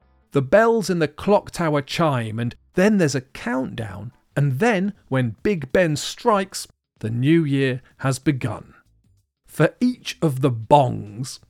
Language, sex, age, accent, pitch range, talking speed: English, male, 40-59, British, 115-165 Hz, 145 wpm